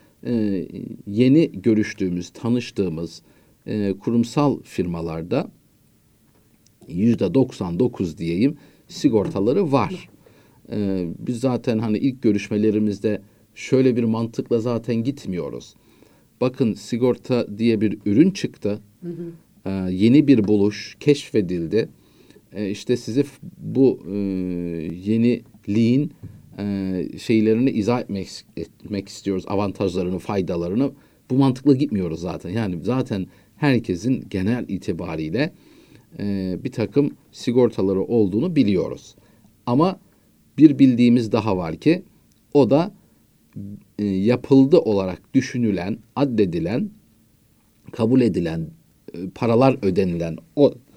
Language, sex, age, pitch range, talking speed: Turkish, male, 50-69, 100-130 Hz, 95 wpm